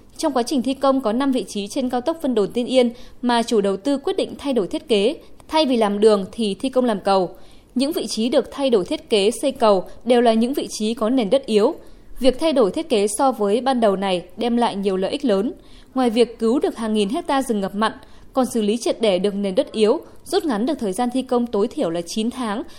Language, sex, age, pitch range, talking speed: Vietnamese, female, 20-39, 210-270 Hz, 265 wpm